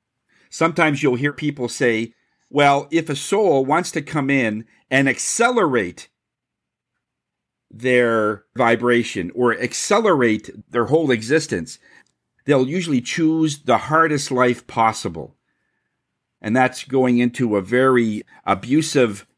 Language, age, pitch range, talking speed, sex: English, 50-69, 115-150 Hz, 110 wpm, male